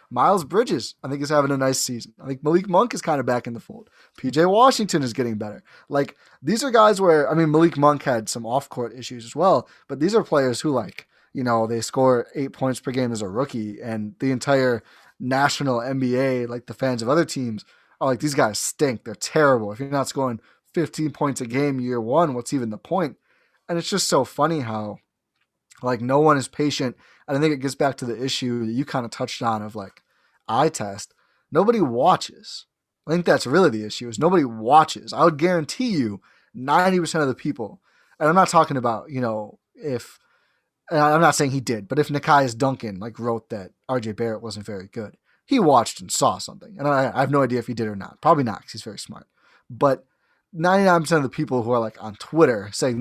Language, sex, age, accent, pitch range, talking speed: English, male, 20-39, American, 120-150 Hz, 220 wpm